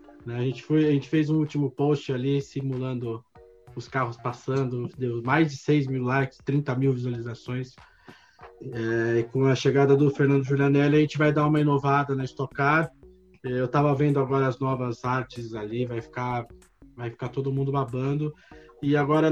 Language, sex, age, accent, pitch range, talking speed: Portuguese, male, 20-39, Brazilian, 125-150 Hz, 175 wpm